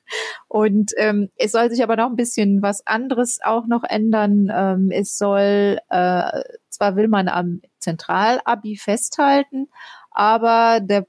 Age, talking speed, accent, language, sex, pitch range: 30-49, 140 wpm, German, German, female, 190-230 Hz